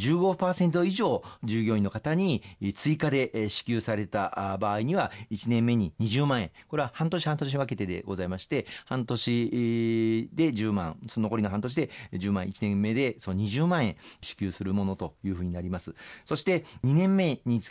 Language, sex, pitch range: Japanese, male, 105-150 Hz